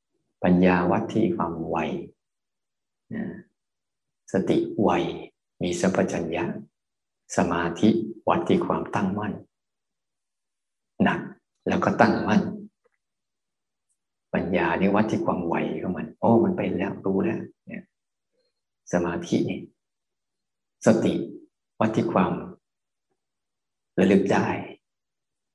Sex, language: male, Thai